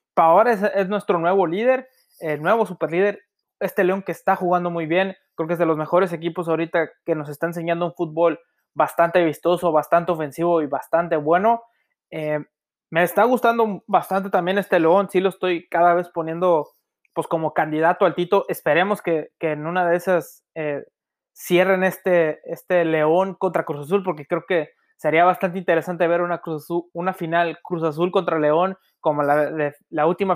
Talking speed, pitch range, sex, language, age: 185 wpm, 165-195 Hz, male, Spanish, 20-39